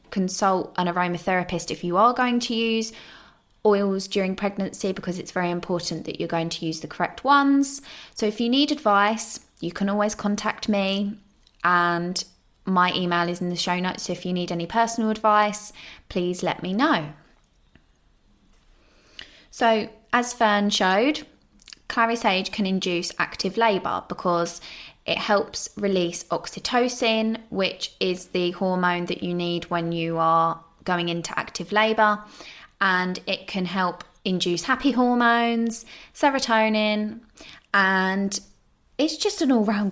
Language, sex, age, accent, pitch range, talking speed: English, female, 20-39, British, 175-220 Hz, 145 wpm